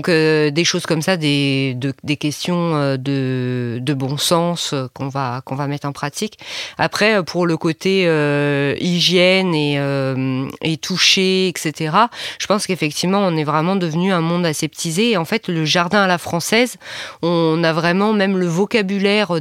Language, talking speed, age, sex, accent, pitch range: French, 175 wpm, 20-39, female, French, 150-185 Hz